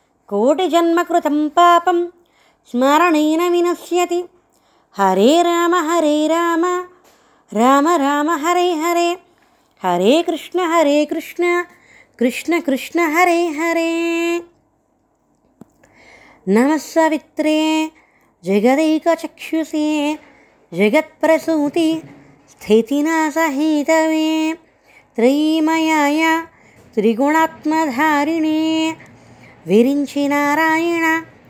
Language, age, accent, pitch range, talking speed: Telugu, 20-39, native, 275-330 Hz, 45 wpm